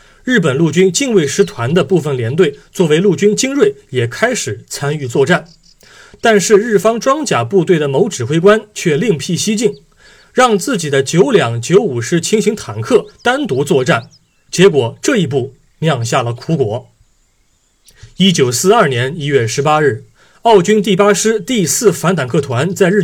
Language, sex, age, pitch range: Chinese, male, 30-49, 135-205 Hz